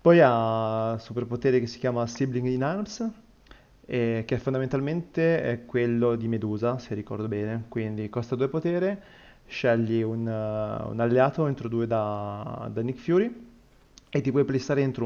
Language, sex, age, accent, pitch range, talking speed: Italian, male, 20-39, native, 110-130 Hz, 165 wpm